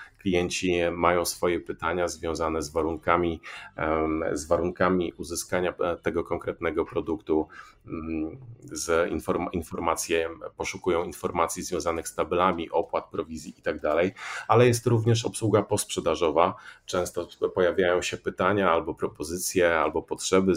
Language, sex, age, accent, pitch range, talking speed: Polish, male, 40-59, native, 85-95 Hz, 100 wpm